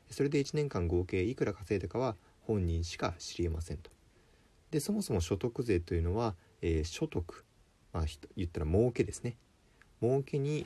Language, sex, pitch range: Japanese, male, 85-115 Hz